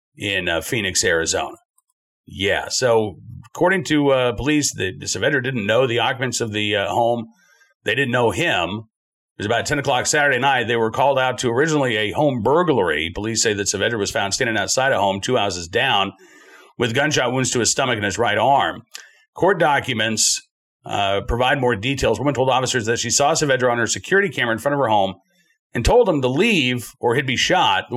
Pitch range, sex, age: 115-145 Hz, male, 50-69